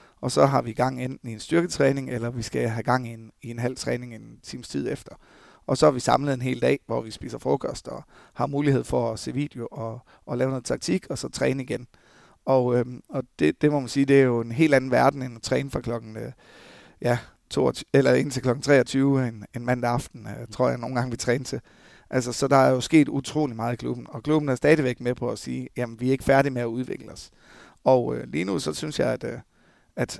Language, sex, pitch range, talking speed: Danish, male, 120-140 Hz, 235 wpm